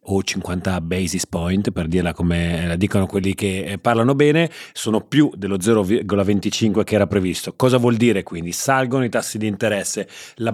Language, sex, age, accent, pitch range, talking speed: Italian, male, 30-49, native, 95-115 Hz, 170 wpm